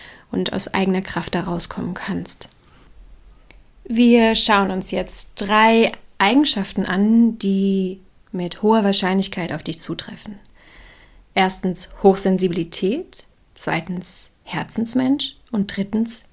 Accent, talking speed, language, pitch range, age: German, 95 wpm, German, 180-215 Hz, 30-49